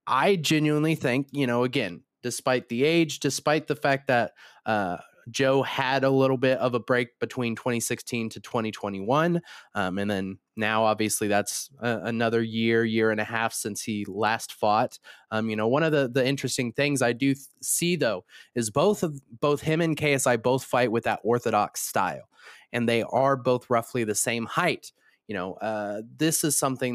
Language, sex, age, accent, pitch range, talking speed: English, male, 20-39, American, 110-135 Hz, 185 wpm